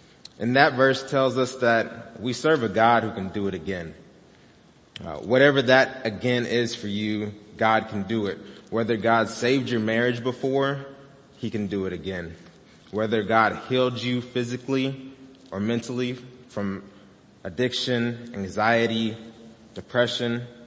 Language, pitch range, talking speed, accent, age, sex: English, 100-125 Hz, 140 wpm, American, 20-39, male